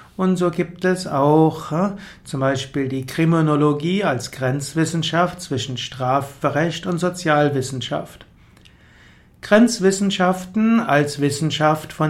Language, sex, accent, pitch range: German, male, German, 140-170 Hz